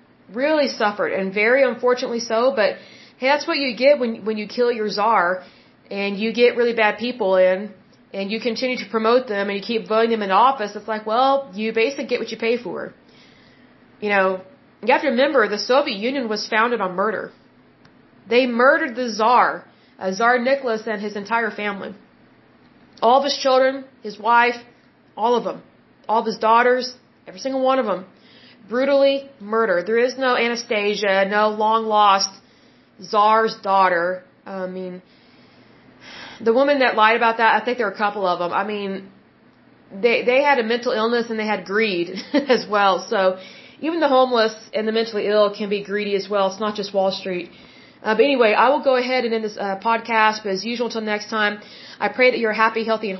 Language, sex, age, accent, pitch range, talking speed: Hindi, female, 30-49, American, 205-245 Hz, 195 wpm